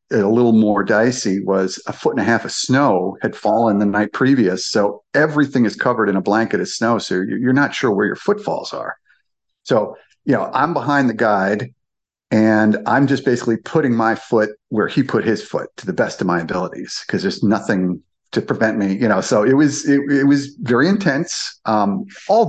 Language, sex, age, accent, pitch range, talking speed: English, male, 50-69, American, 105-135 Hz, 205 wpm